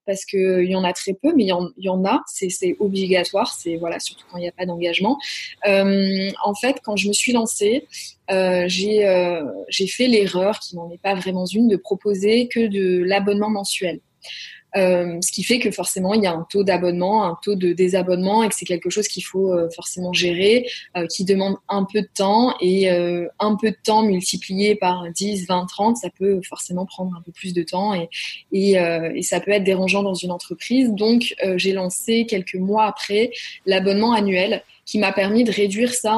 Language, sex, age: French, female, 20-39